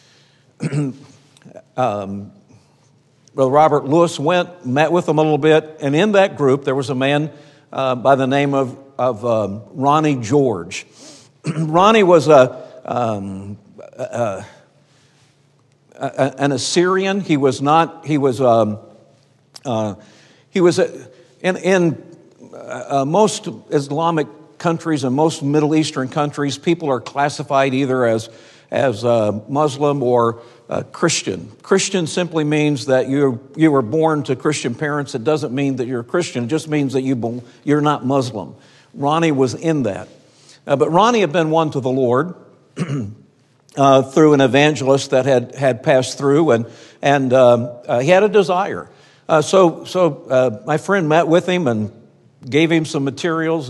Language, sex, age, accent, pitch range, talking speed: English, male, 60-79, American, 130-155 Hz, 155 wpm